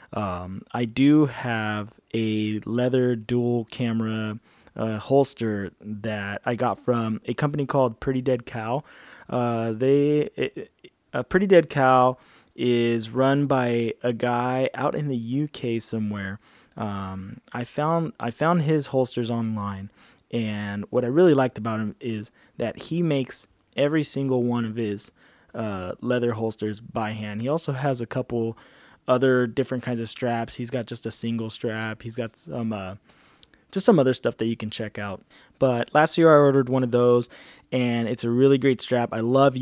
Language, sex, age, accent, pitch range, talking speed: English, male, 20-39, American, 115-135 Hz, 170 wpm